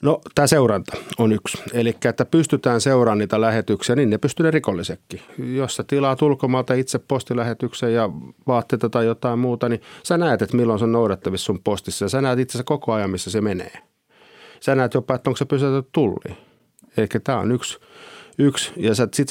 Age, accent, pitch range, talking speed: 50-69, native, 100-130 Hz, 185 wpm